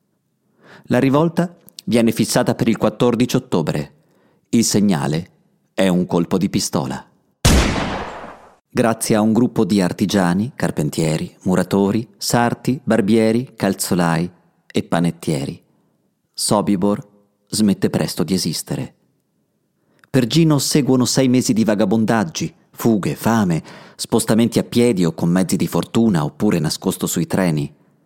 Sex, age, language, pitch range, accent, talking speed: male, 40-59, Italian, 100-130 Hz, native, 115 wpm